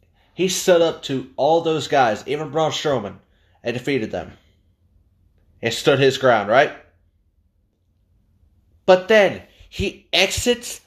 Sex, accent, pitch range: male, American, 90-130 Hz